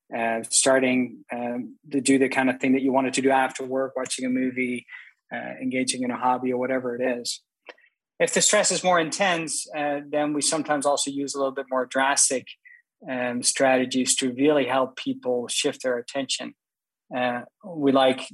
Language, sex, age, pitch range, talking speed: English, male, 20-39, 125-145 Hz, 185 wpm